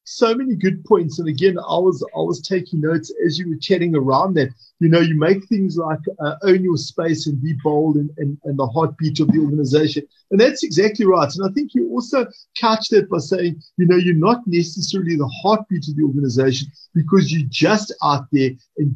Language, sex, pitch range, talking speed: English, male, 145-190 Hz, 215 wpm